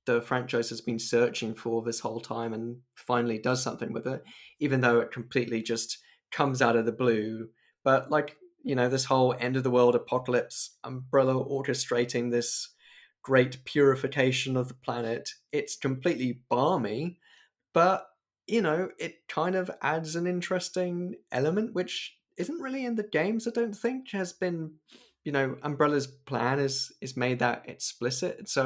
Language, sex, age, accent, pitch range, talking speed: English, male, 20-39, British, 125-160 Hz, 160 wpm